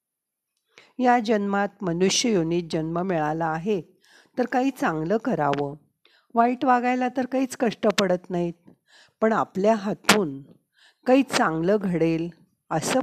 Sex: female